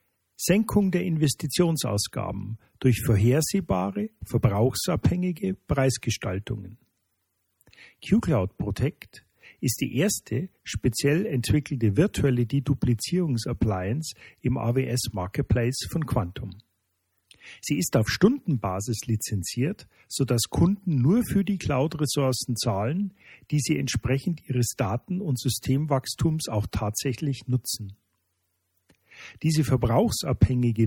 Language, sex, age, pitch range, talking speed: German, male, 50-69, 110-150 Hz, 85 wpm